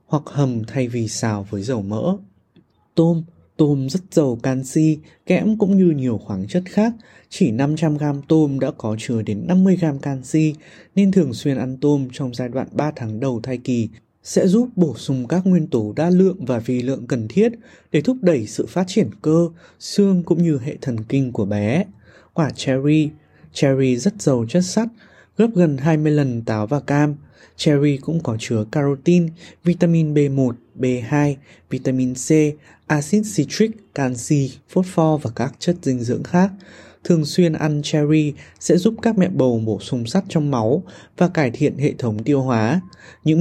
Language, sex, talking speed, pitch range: Vietnamese, male, 175 wpm, 130-170 Hz